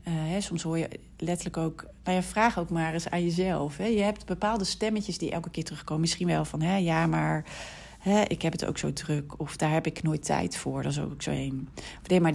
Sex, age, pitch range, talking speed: female, 40-59, 145-180 Hz, 225 wpm